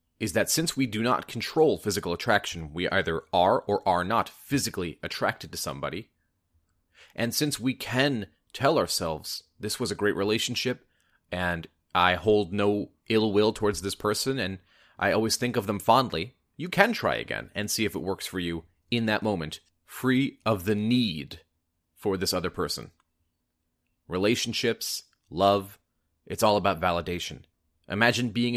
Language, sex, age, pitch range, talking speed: English, male, 30-49, 85-115 Hz, 160 wpm